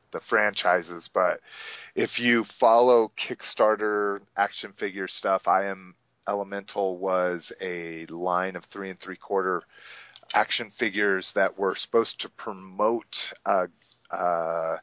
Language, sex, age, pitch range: English, male, 30-49, 95-110 Hz